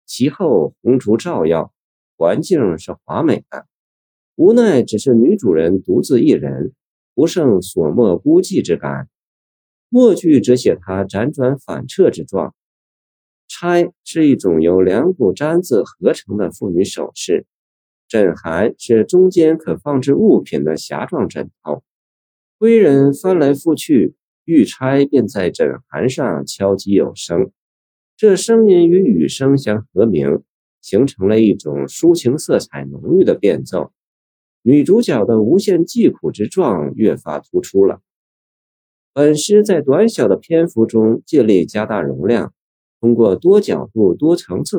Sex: male